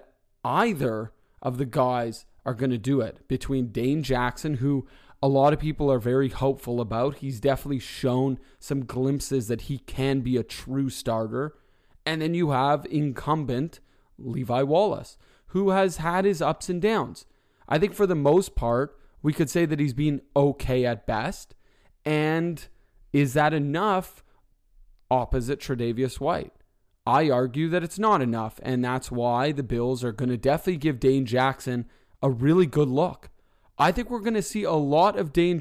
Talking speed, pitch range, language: 170 wpm, 125-150 Hz, English